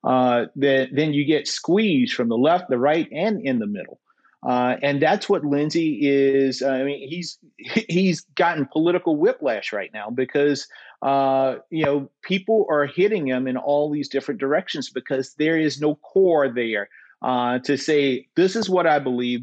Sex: male